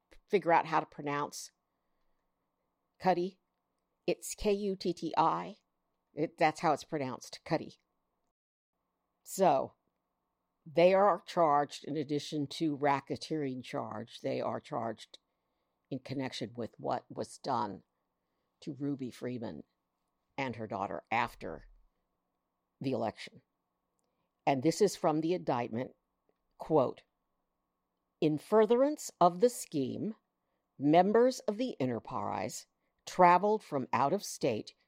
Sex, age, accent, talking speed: female, 60-79, American, 105 wpm